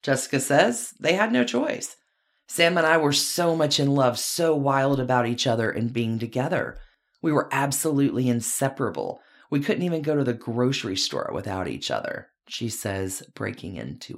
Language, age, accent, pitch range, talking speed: English, 30-49, American, 120-155 Hz, 175 wpm